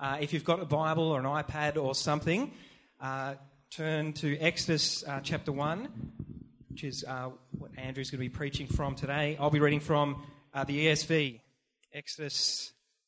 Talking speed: 170 wpm